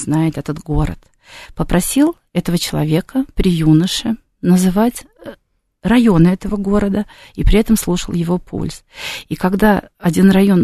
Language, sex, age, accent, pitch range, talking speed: Russian, female, 40-59, native, 175-225 Hz, 125 wpm